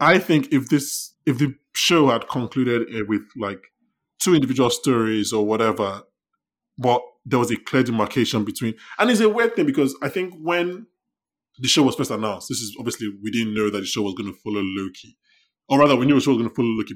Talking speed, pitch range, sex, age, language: 220 wpm, 105-135 Hz, male, 20-39, English